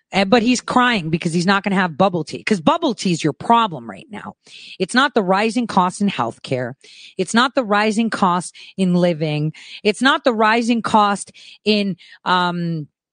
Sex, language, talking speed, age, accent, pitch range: female, English, 185 wpm, 30-49, American, 180-235 Hz